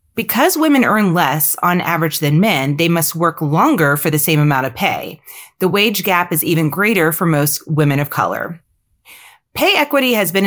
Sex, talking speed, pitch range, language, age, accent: female, 190 wpm, 155-210 Hz, English, 30-49, American